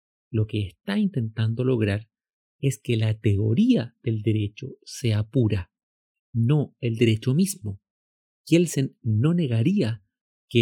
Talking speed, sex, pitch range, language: 120 wpm, male, 110-150 Hz, Spanish